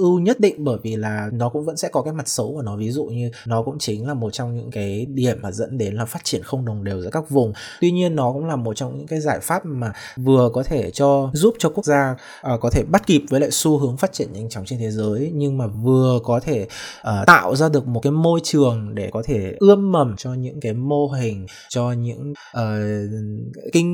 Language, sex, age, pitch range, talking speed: Vietnamese, male, 20-39, 115-150 Hz, 250 wpm